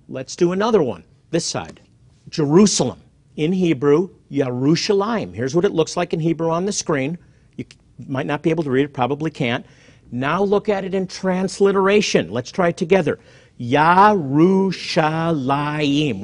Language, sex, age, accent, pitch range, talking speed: English, male, 50-69, American, 135-190 Hz, 150 wpm